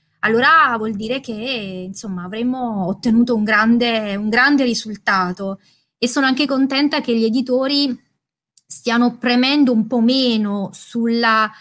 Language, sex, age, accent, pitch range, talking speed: Italian, female, 20-39, native, 205-245 Hz, 130 wpm